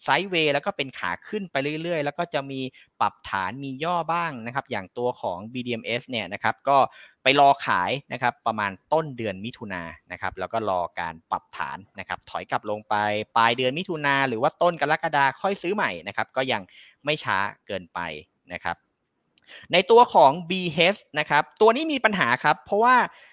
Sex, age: male, 30-49